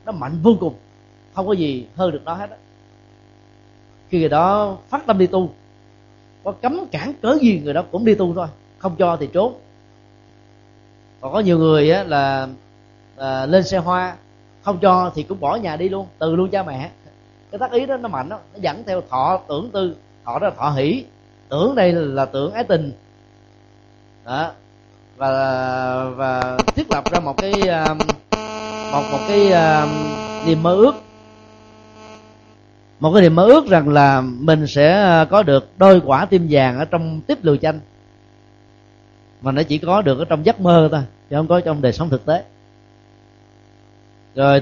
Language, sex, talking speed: Vietnamese, male, 180 wpm